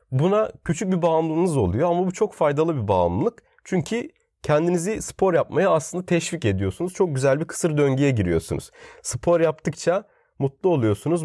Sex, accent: male, native